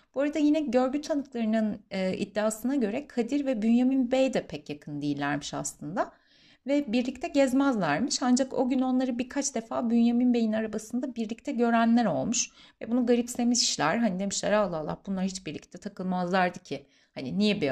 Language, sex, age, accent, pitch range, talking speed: Turkish, female, 30-49, native, 175-255 Hz, 155 wpm